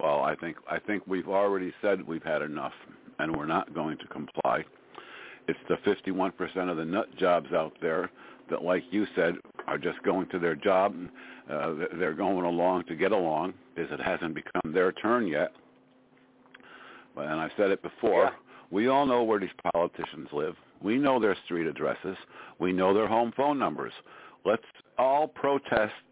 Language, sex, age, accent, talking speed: English, male, 60-79, American, 180 wpm